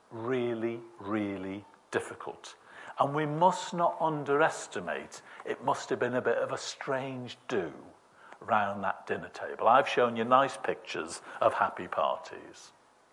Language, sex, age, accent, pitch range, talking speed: English, male, 60-79, British, 120-155 Hz, 135 wpm